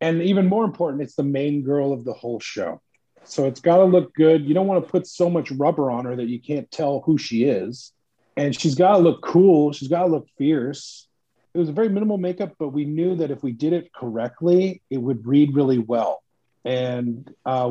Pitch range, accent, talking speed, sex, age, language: 130-165 Hz, American, 215 wpm, male, 40-59, English